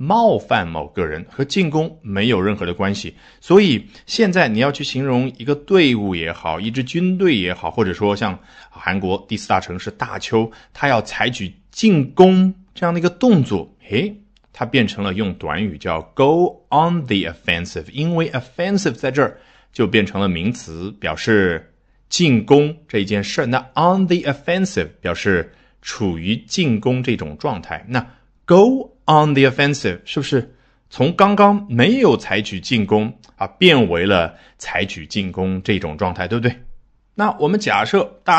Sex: male